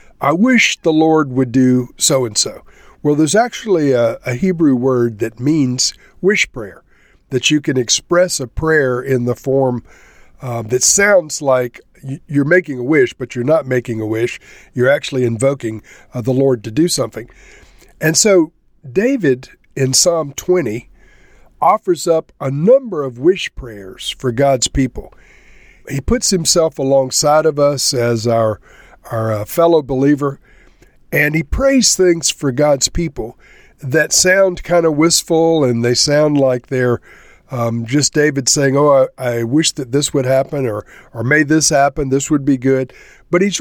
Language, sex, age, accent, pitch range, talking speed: English, male, 50-69, American, 125-160 Hz, 165 wpm